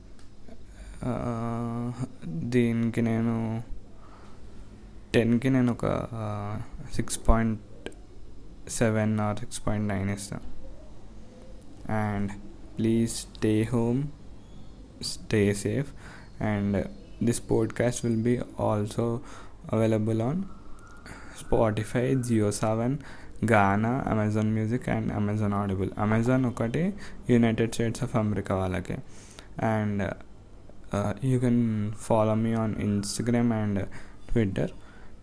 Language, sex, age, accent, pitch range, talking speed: Telugu, male, 20-39, native, 100-115 Hz, 85 wpm